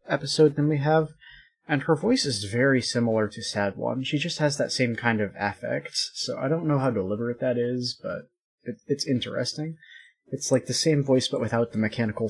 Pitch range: 120-160 Hz